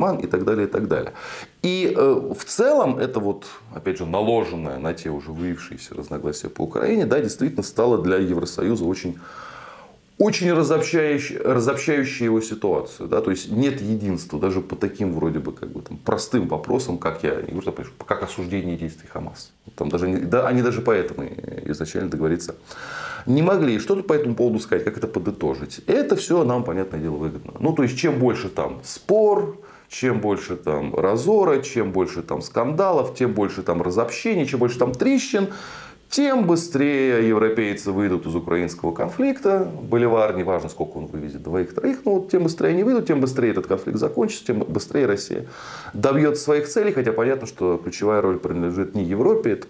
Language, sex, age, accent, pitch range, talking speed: Russian, male, 20-39, native, 90-150 Hz, 170 wpm